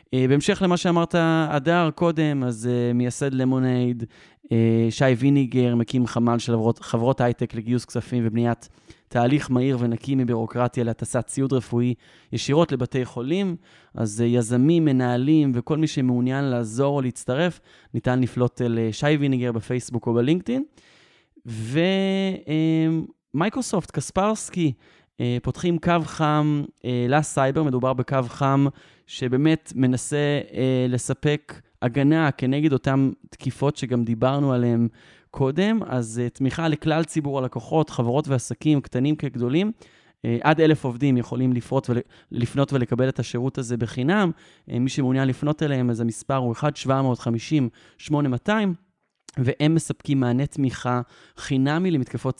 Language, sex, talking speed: Hebrew, male, 115 wpm